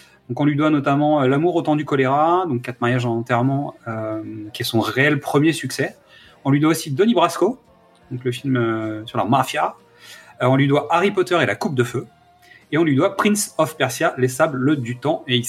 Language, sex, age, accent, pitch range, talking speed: French, male, 30-49, French, 125-160 Hz, 235 wpm